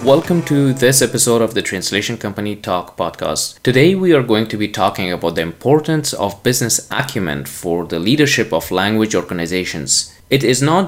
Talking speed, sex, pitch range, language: 175 wpm, male, 95-135 Hz, English